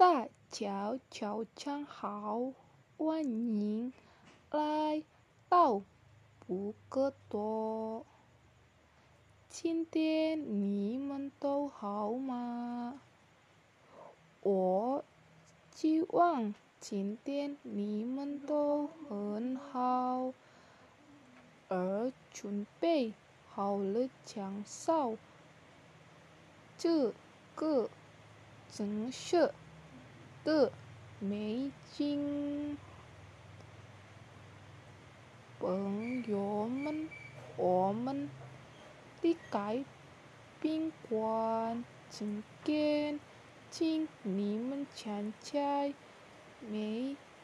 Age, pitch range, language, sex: 20-39, 200-285 Hz, Indonesian, female